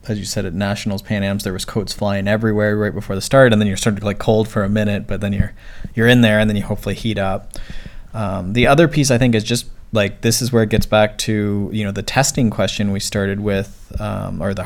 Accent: American